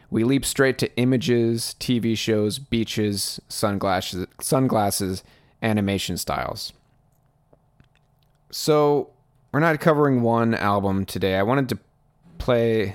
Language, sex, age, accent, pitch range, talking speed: English, male, 30-49, American, 95-130 Hz, 105 wpm